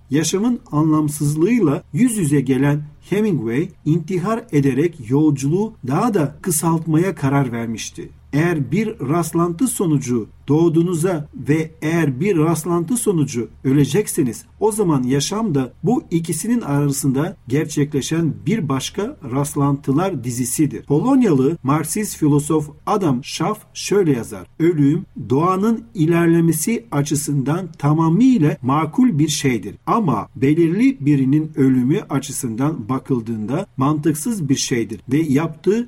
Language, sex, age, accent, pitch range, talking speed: Turkish, male, 50-69, native, 135-170 Hz, 105 wpm